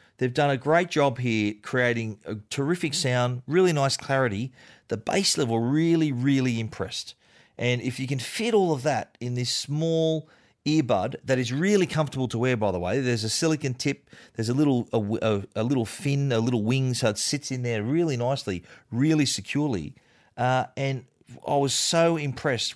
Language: English